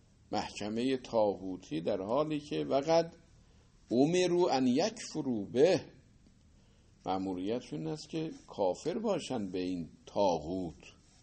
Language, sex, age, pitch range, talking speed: Persian, male, 50-69, 95-155 Hz, 105 wpm